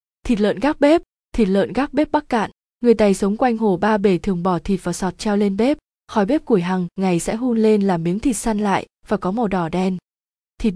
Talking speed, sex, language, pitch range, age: 245 wpm, female, Vietnamese, 190-235 Hz, 20-39